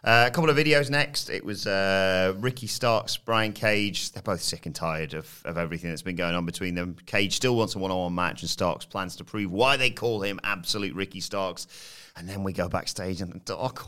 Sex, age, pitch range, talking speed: male, 30-49, 90-115 Hz, 230 wpm